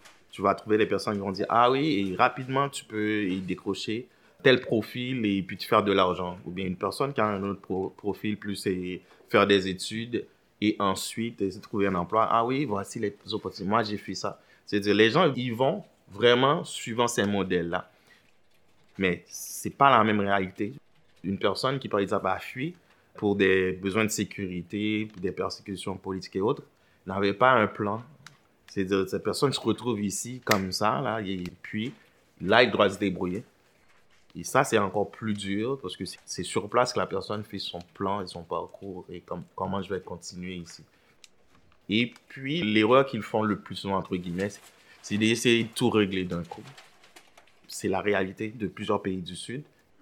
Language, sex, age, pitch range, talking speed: French, male, 30-49, 95-115 Hz, 195 wpm